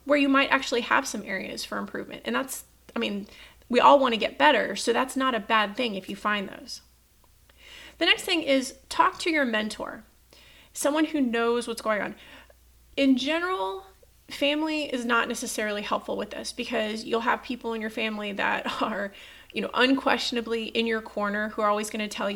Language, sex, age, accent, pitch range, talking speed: English, female, 30-49, American, 215-270 Hz, 195 wpm